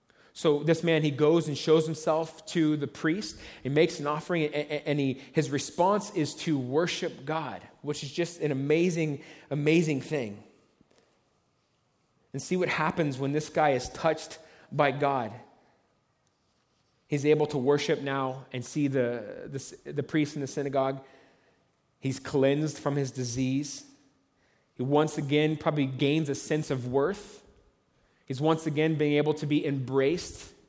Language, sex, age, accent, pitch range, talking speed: English, male, 30-49, American, 135-160 Hz, 150 wpm